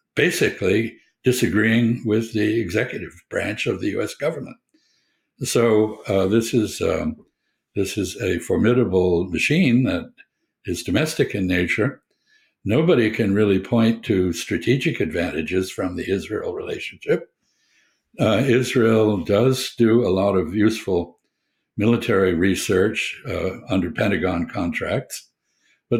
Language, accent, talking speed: English, American, 120 wpm